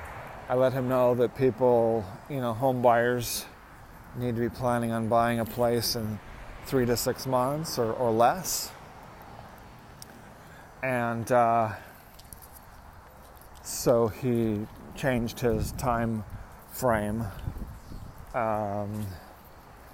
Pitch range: 100-120 Hz